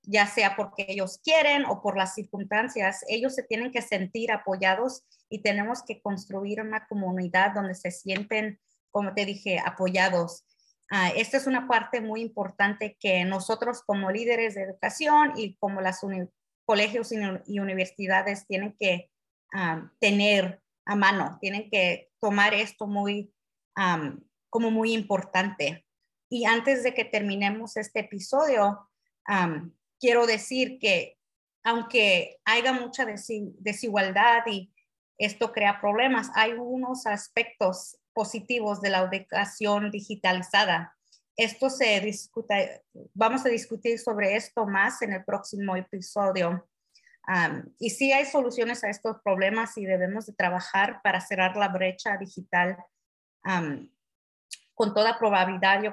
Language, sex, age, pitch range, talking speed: English, female, 30-49, 195-225 Hz, 135 wpm